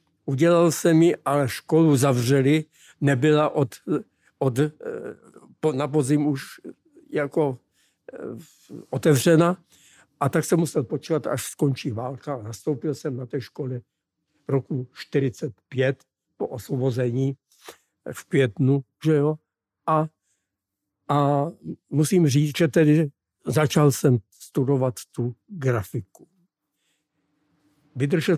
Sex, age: male, 60-79